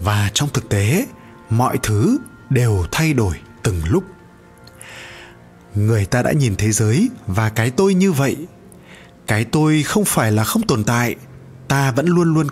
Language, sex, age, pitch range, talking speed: Vietnamese, male, 20-39, 110-145 Hz, 165 wpm